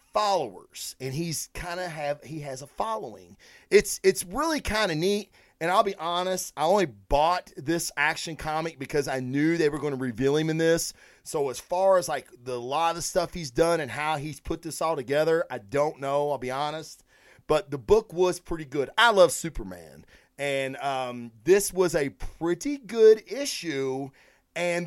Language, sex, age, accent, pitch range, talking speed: English, male, 30-49, American, 140-185 Hz, 190 wpm